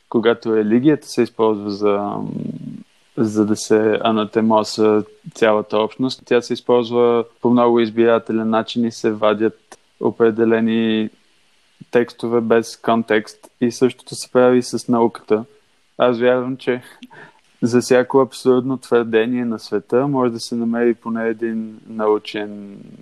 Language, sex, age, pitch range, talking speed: Bulgarian, male, 20-39, 110-120 Hz, 125 wpm